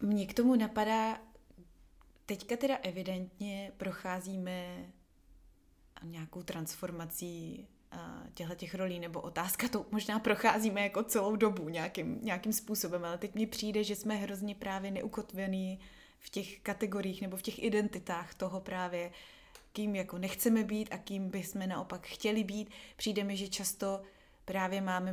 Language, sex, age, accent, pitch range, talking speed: Czech, female, 20-39, native, 180-210 Hz, 135 wpm